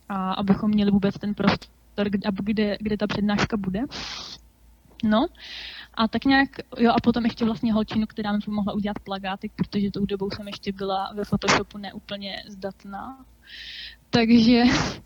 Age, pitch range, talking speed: 20-39, 200-225 Hz, 150 wpm